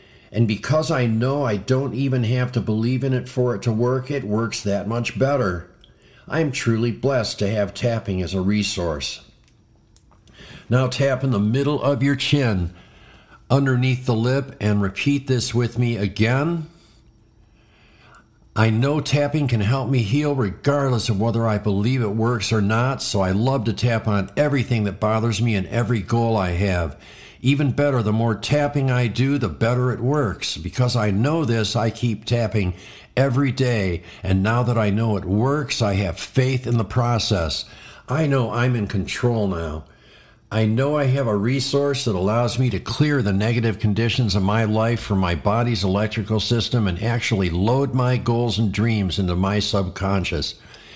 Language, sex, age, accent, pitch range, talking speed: English, male, 50-69, American, 105-130 Hz, 175 wpm